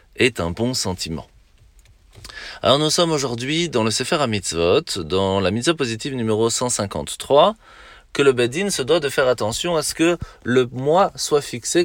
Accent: French